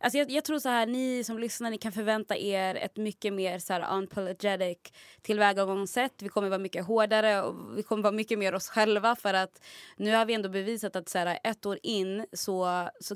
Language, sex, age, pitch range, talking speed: English, female, 20-39, 180-215 Hz, 215 wpm